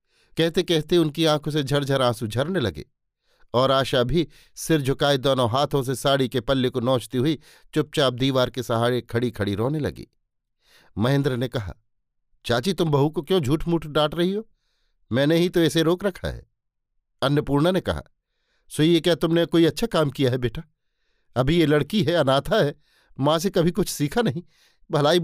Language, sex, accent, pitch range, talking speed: Hindi, male, native, 125-170 Hz, 185 wpm